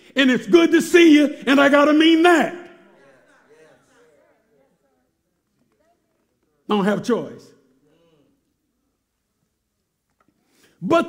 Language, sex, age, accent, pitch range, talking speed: English, male, 60-79, American, 195-265 Hz, 95 wpm